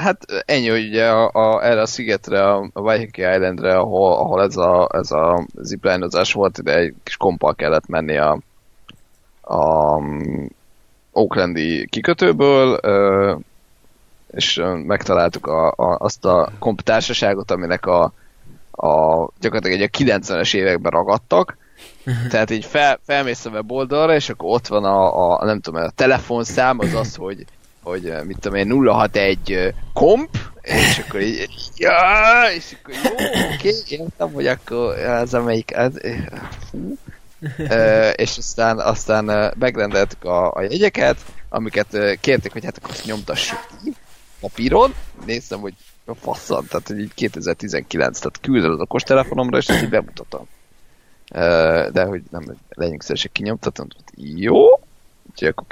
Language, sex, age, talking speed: Hungarian, male, 20-39, 140 wpm